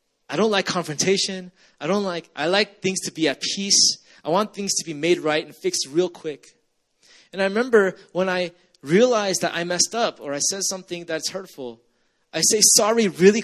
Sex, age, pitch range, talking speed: male, 20-39, 160-205 Hz, 200 wpm